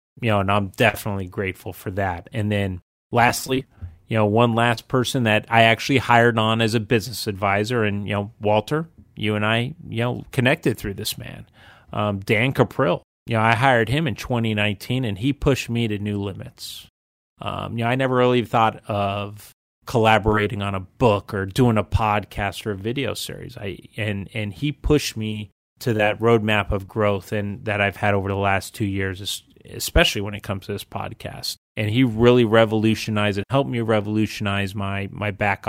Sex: male